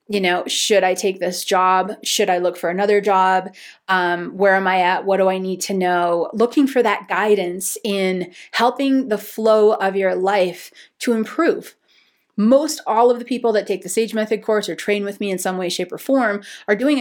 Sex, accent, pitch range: female, American, 185-220 Hz